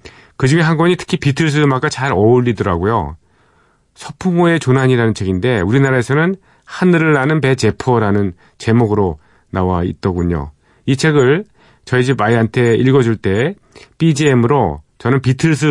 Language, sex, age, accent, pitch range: Korean, male, 40-59, native, 100-145 Hz